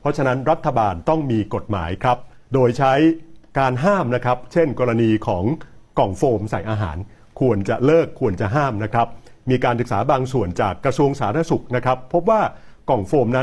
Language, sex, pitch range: Thai, male, 110-150 Hz